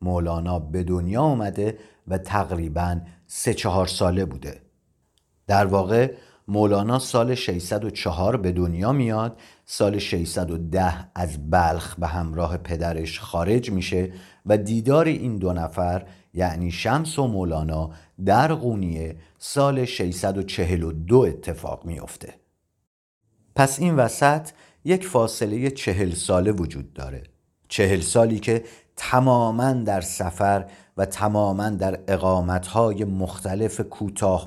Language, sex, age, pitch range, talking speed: Persian, male, 50-69, 85-115 Hz, 110 wpm